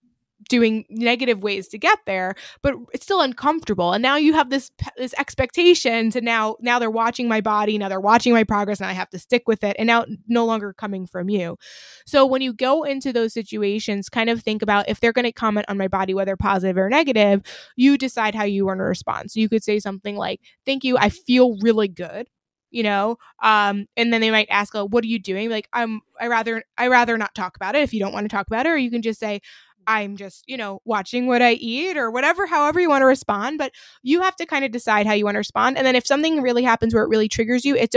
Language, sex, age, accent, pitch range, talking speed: English, female, 20-39, American, 205-250 Hz, 255 wpm